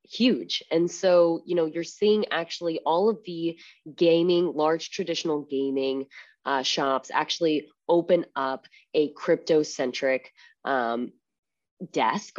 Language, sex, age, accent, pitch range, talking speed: English, female, 20-39, American, 140-185 Hz, 120 wpm